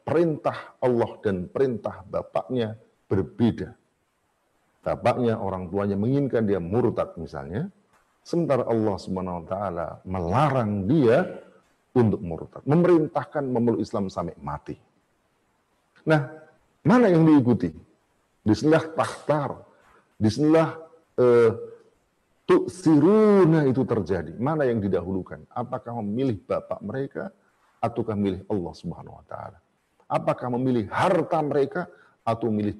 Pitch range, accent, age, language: 110-160 Hz, native, 50-69, Indonesian